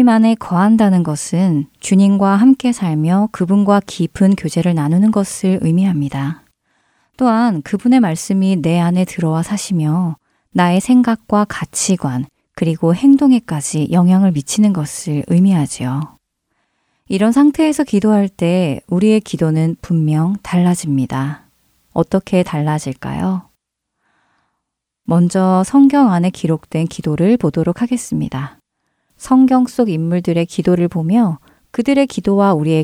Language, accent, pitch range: Korean, native, 165-220 Hz